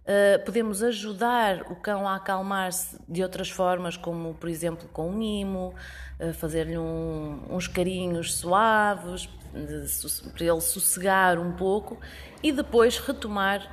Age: 20-39